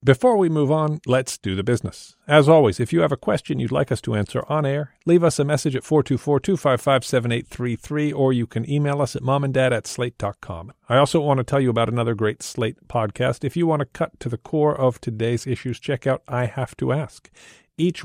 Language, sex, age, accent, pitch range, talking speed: English, male, 50-69, American, 115-140 Hz, 215 wpm